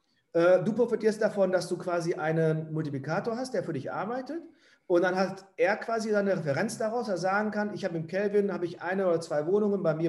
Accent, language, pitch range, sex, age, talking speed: German, German, 170-215 Hz, male, 40-59, 215 wpm